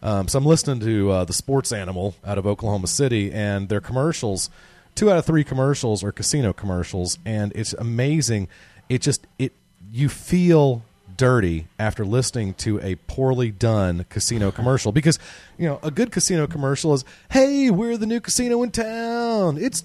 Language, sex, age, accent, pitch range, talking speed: English, male, 30-49, American, 120-200 Hz, 170 wpm